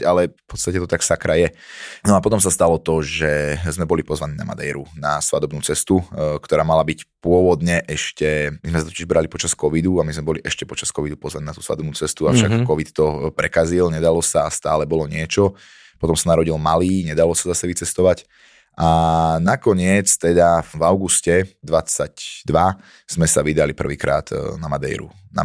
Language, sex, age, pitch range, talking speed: Slovak, male, 20-39, 75-85 Hz, 185 wpm